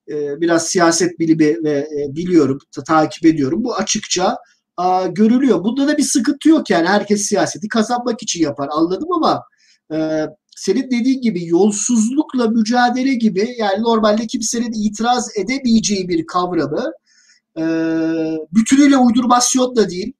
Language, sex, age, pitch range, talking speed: Turkish, male, 50-69, 165-225 Hz, 115 wpm